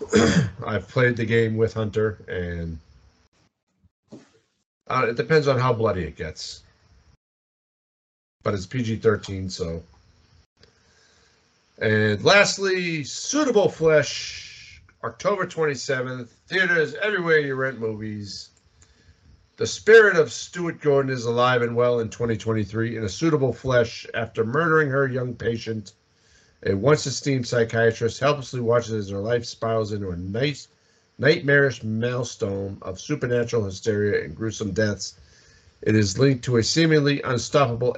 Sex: male